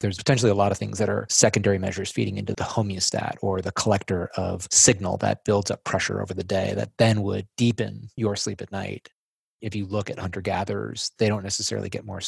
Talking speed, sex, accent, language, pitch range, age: 215 wpm, male, American, English, 95-110 Hz, 30-49